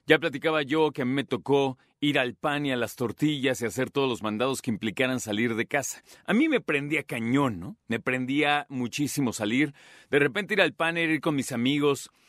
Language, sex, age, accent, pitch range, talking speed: Spanish, male, 40-59, Mexican, 125-160 Hz, 215 wpm